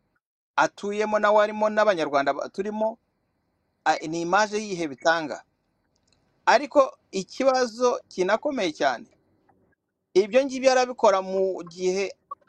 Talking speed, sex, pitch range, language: 90 wpm, male, 175-225 Hz, English